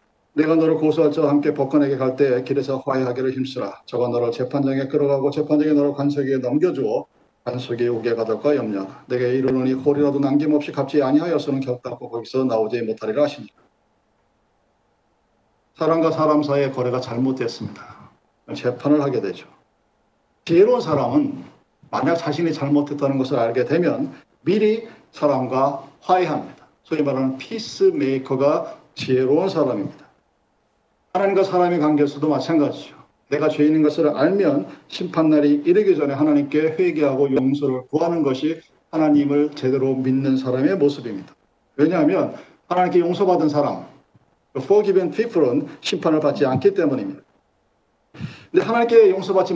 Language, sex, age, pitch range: Korean, male, 40-59, 135-165 Hz